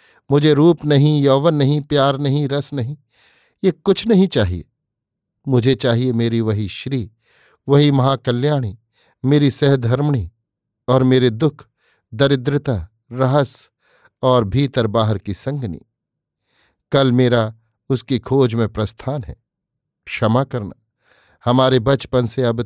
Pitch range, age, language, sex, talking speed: 110-135 Hz, 50-69, Hindi, male, 120 wpm